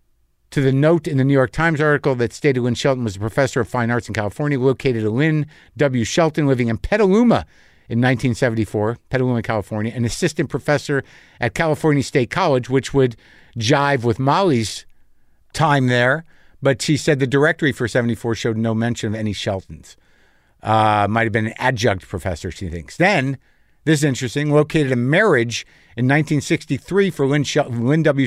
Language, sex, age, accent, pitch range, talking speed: English, male, 50-69, American, 115-145 Hz, 175 wpm